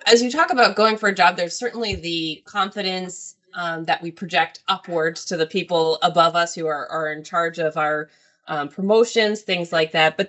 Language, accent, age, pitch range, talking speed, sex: English, American, 20-39, 165-200 Hz, 205 wpm, female